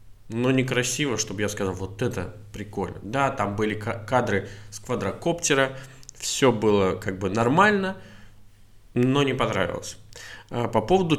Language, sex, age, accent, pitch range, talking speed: Russian, male, 20-39, native, 105-130 Hz, 130 wpm